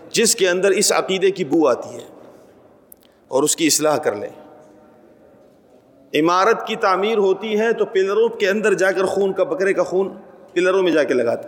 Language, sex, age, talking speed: Urdu, male, 40-59, 190 wpm